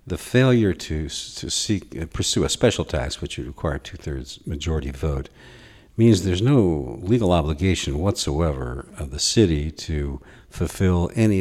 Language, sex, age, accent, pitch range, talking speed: English, male, 60-79, American, 75-95 Hz, 155 wpm